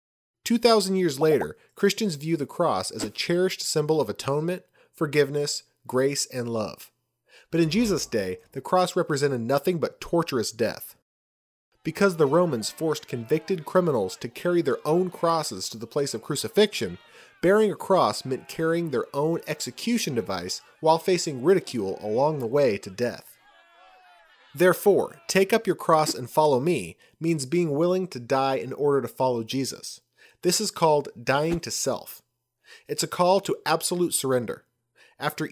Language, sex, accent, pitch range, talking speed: English, male, American, 130-180 Hz, 155 wpm